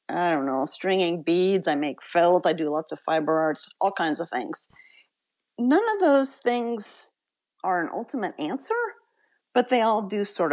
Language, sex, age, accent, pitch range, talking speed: English, female, 40-59, American, 165-275 Hz, 175 wpm